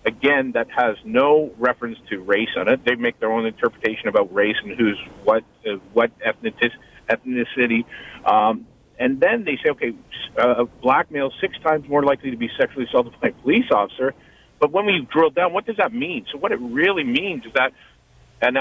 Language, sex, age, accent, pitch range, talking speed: English, male, 50-69, American, 125-185 Hz, 195 wpm